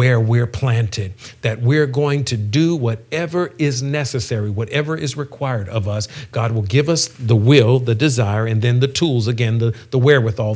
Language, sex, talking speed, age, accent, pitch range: English, male, 180 wpm, 50-69, American, 115-130 Hz